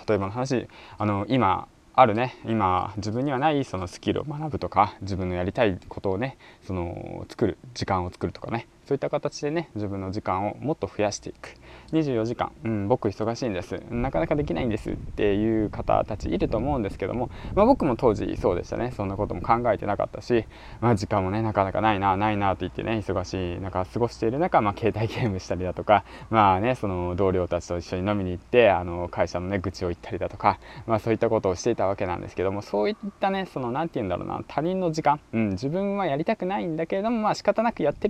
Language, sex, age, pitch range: Japanese, male, 20-39, 95-145 Hz